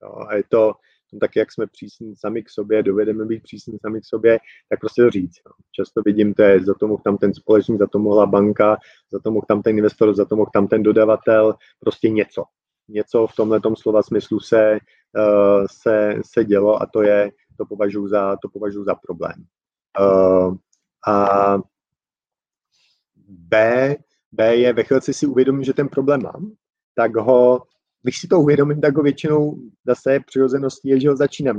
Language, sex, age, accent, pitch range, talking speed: Czech, male, 30-49, native, 105-125 Hz, 185 wpm